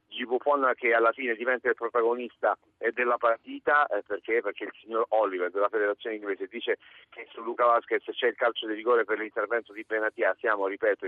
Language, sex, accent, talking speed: Italian, male, native, 185 wpm